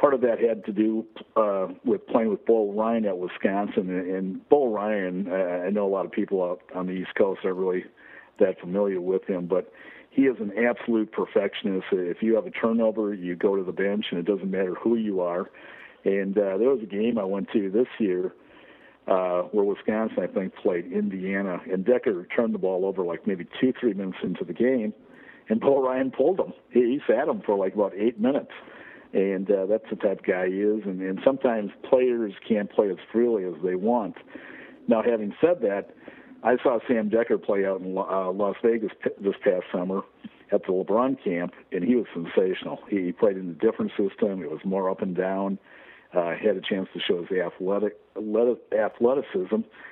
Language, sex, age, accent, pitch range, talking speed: English, male, 50-69, American, 95-110 Hz, 205 wpm